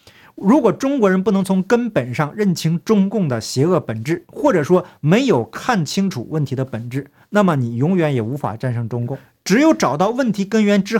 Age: 50-69